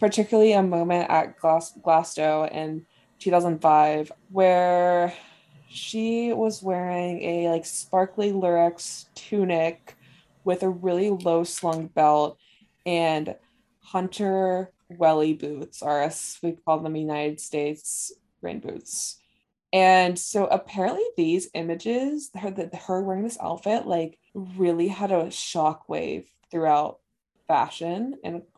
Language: English